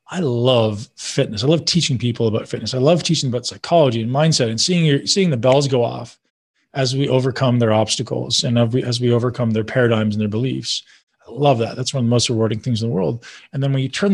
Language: English